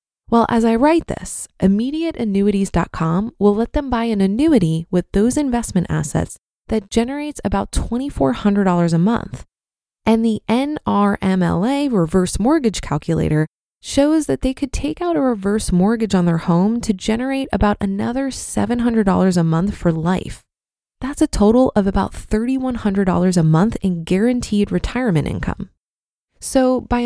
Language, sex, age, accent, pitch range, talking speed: English, female, 20-39, American, 185-245 Hz, 140 wpm